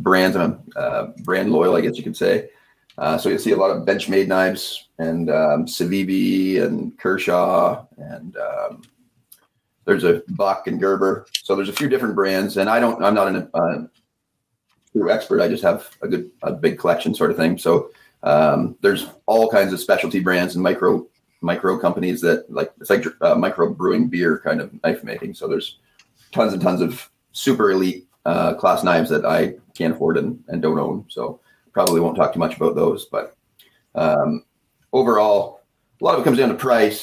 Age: 30-49